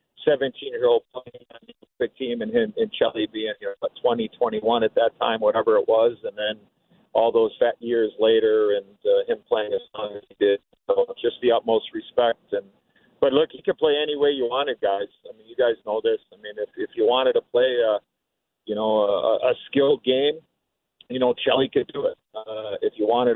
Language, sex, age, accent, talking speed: English, male, 50-69, American, 215 wpm